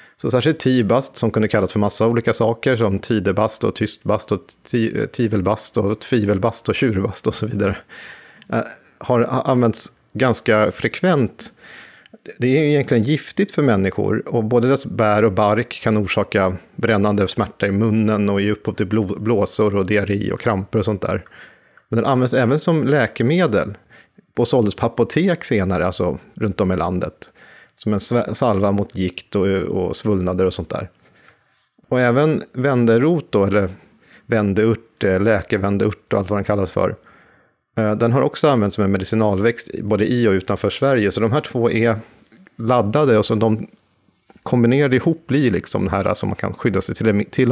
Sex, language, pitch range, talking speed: male, Swedish, 100-120 Hz, 165 wpm